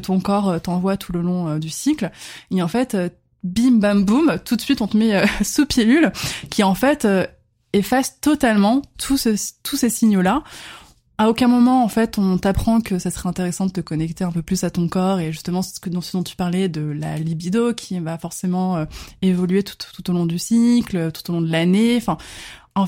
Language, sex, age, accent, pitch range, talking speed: French, female, 20-39, French, 170-210 Hz, 225 wpm